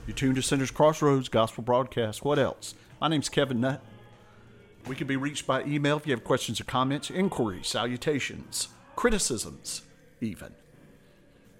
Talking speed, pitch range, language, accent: 150 wpm, 105-135 Hz, English, American